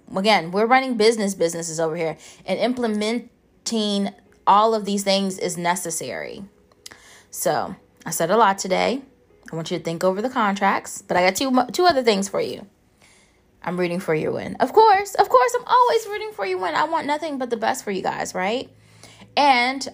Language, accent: English, American